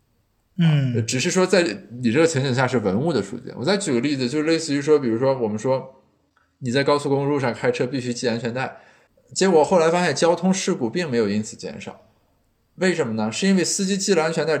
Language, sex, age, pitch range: Chinese, male, 20-39, 115-175 Hz